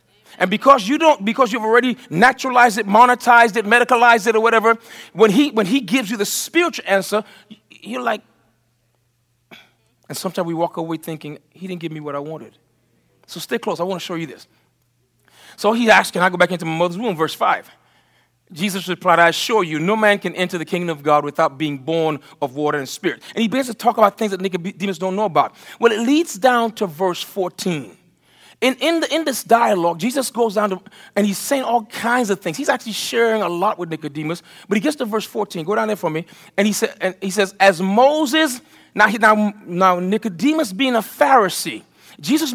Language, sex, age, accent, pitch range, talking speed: English, male, 40-59, American, 175-235 Hz, 215 wpm